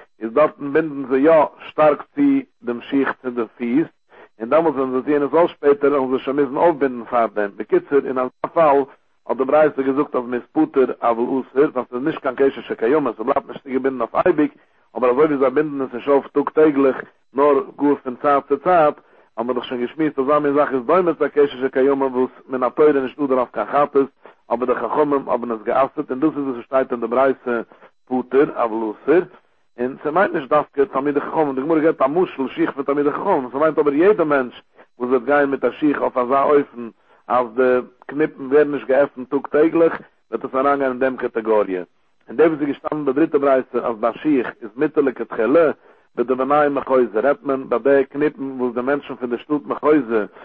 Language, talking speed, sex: English, 115 wpm, male